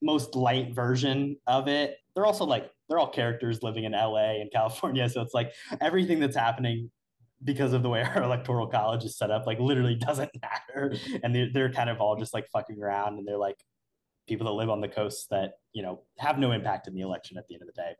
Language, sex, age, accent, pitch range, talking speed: English, male, 20-39, American, 110-135 Hz, 230 wpm